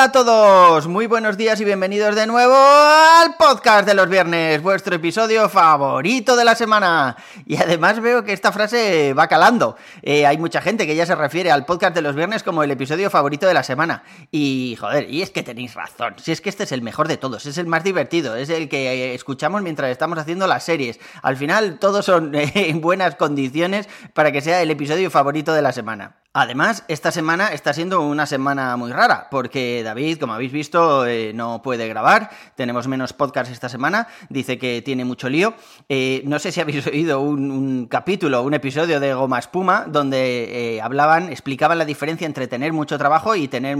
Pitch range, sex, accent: 135-185 Hz, male, Spanish